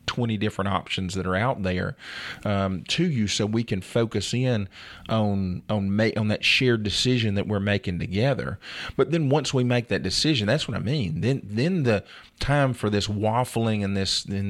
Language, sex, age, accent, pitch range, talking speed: English, male, 40-59, American, 100-130 Hz, 195 wpm